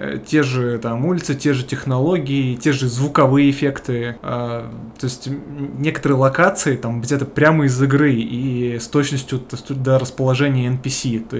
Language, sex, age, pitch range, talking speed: Russian, male, 20-39, 120-140 Hz, 140 wpm